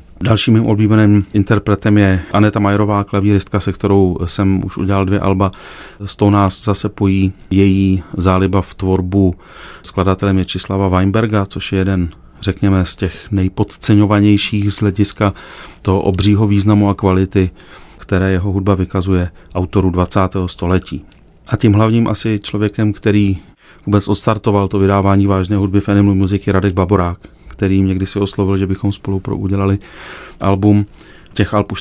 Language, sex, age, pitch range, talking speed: Czech, male, 30-49, 95-105 Hz, 145 wpm